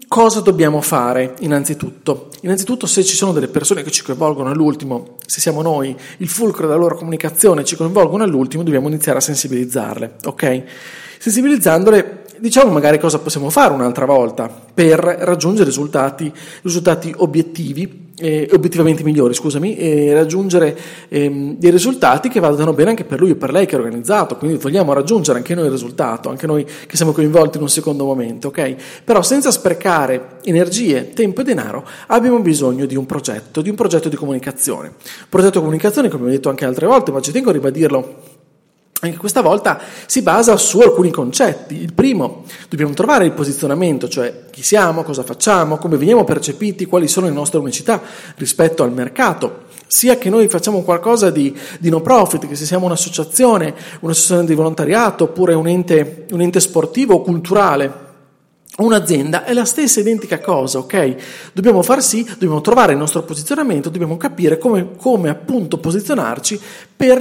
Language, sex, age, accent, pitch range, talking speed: Italian, male, 40-59, native, 145-200 Hz, 170 wpm